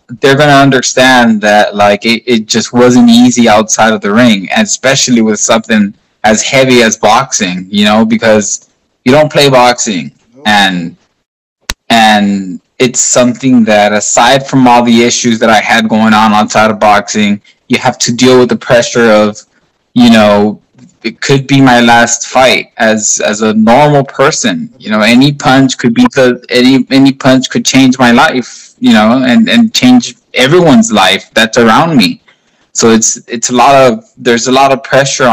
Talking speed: 175 wpm